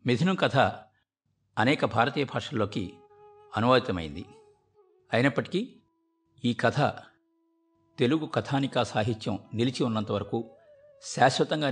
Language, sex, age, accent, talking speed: Telugu, male, 50-69, native, 75 wpm